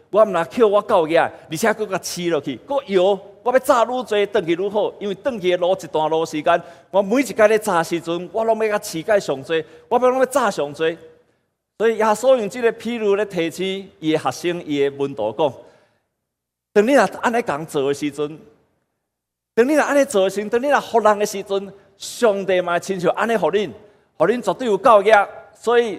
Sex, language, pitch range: male, Chinese, 145-215 Hz